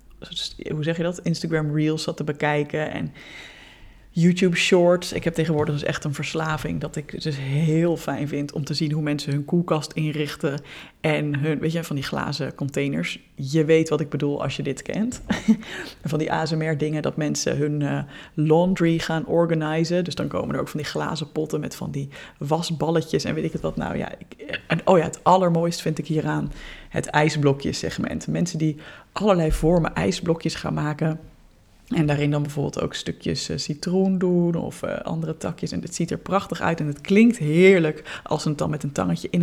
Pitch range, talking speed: 150-170 Hz, 195 wpm